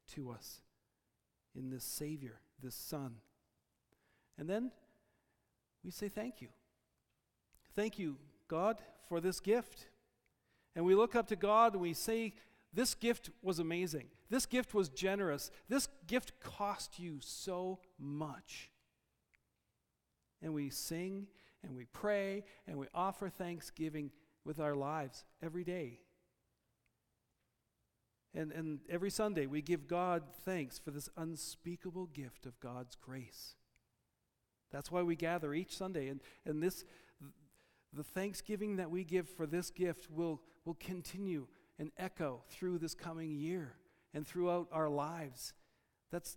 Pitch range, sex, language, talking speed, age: 150-190 Hz, male, English, 135 wpm, 50-69